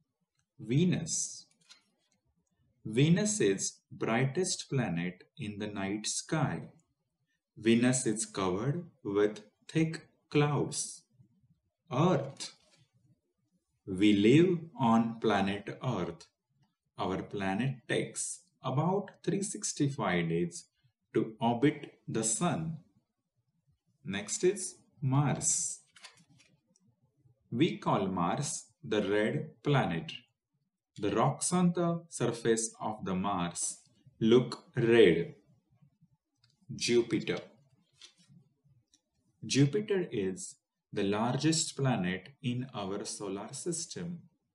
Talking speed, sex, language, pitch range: 80 wpm, male, Marathi, 110-160 Hz